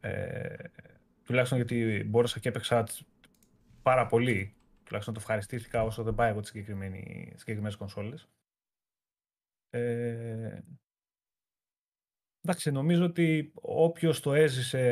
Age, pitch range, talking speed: 30-49, 110-140 Hz, 100 wpm